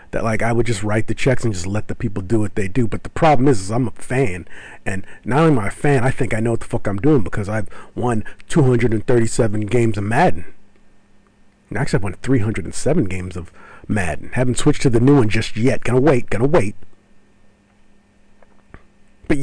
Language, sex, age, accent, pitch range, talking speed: English, male, 40-59, American, 100-135 Hz, 215 wpm